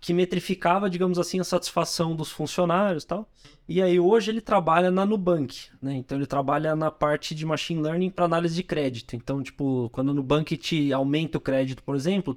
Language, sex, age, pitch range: Portuguese, male, 20-39, 140-180 Hz